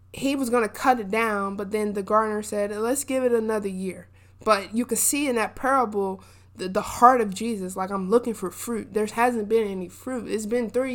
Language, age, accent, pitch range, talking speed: English, 20-39, American, 195-235 Hz, 230 wpm